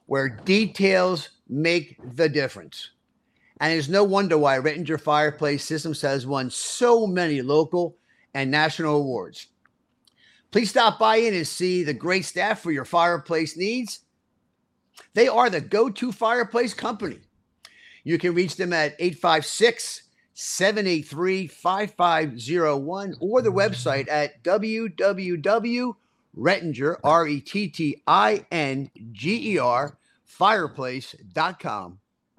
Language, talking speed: English, 95 wpm